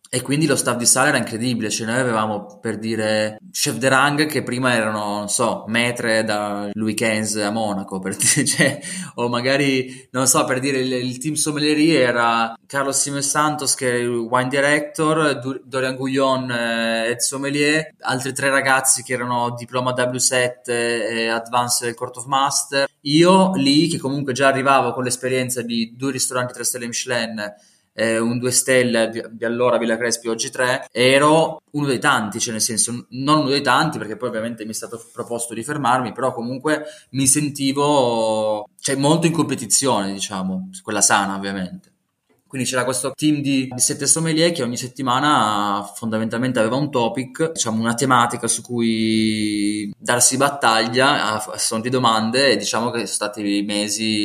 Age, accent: 20-39, native